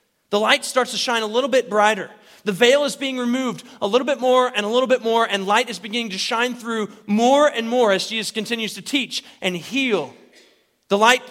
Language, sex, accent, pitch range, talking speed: English, male, American, 200-255 Hz, 225 wpm